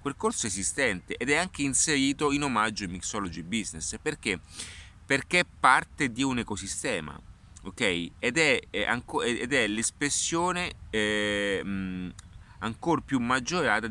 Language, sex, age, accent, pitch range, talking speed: Italian, male, 30-49, native, 95-130 Hz, 125 wpm